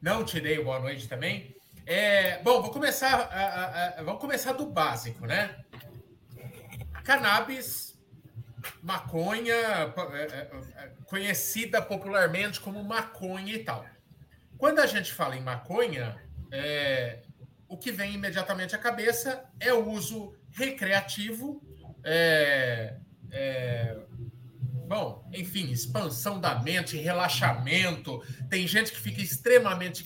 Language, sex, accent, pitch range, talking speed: Portuguese, male, Brazilian, 130-220 Hz, 110 wpm